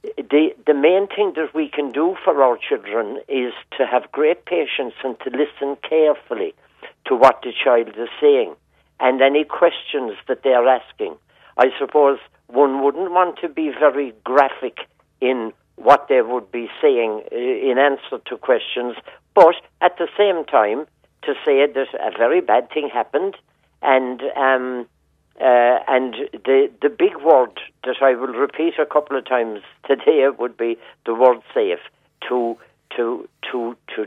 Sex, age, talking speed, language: male, 60-79, 160 wpm, English